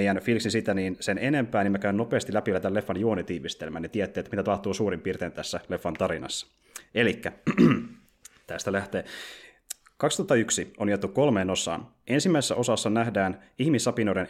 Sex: male